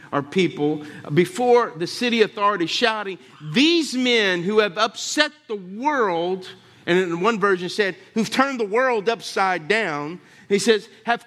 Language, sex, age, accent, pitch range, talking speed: English, male, 50-69, American, 155-225 Hz, 155 wpm